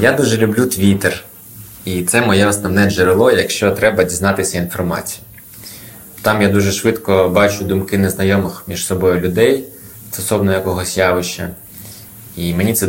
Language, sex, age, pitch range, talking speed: Ukrainian, male, 20-39, 95-110 Hz, 135 wpm